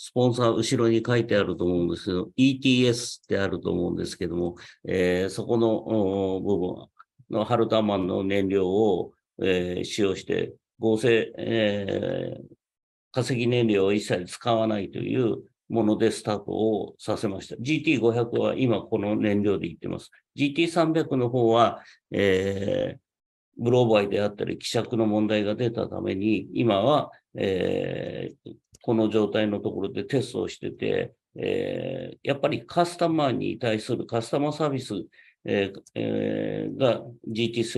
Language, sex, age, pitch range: English, male, 50-69, 100-125 Hz